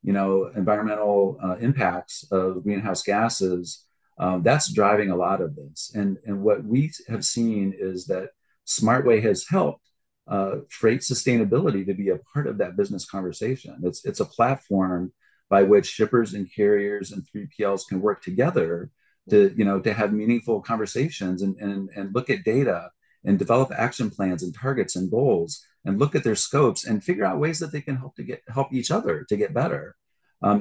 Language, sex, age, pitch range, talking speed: English, male, 40-59, 95-120 Hz, 185 wpm